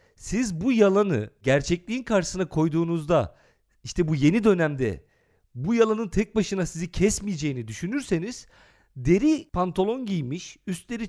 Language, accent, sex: Turkish, native, male